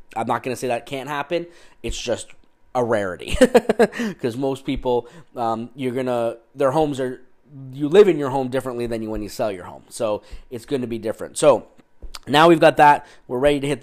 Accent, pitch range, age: American, 115-140 Hz, 20-39